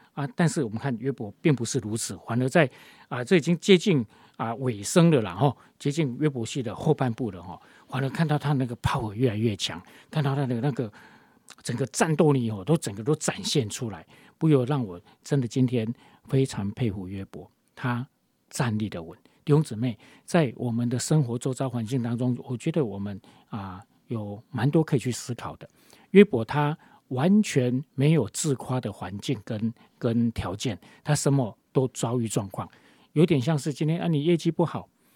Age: 40-59